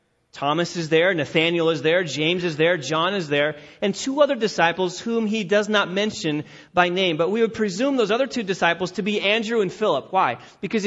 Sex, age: male, 30-49